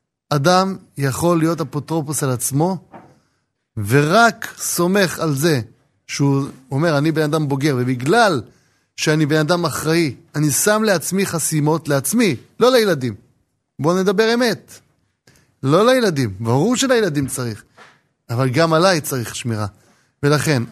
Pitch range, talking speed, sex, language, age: 130-170 Hz, 120 wpm, male, Hebrew, 30-49